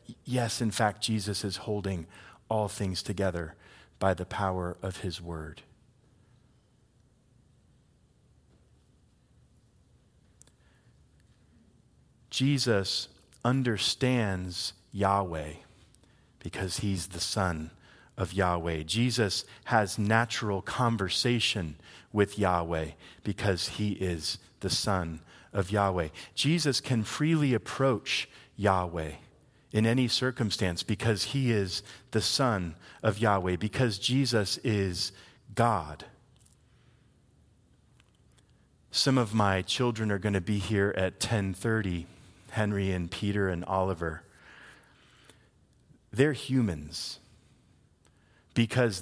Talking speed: 90 wpm